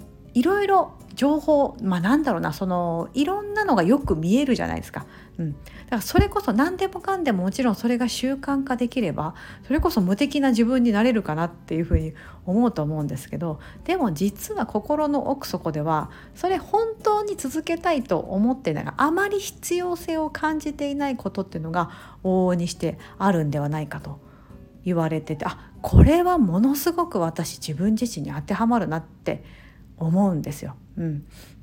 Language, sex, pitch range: Japanese, female, 175-285 Hz